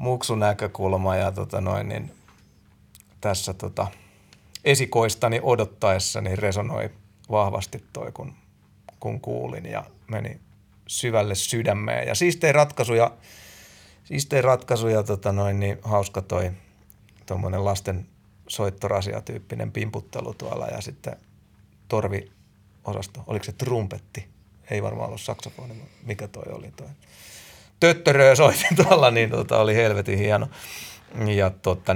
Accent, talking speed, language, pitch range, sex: native, 120 wpm, Finnish, 100-120 Hz, male